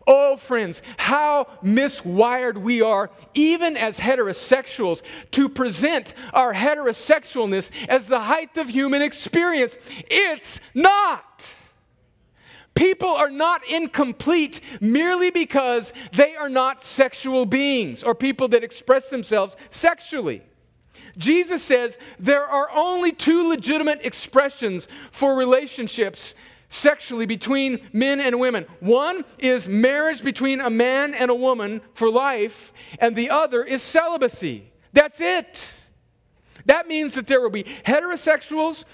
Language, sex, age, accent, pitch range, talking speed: English, male, 40-59, American, 250-315 Hz, 120 wpm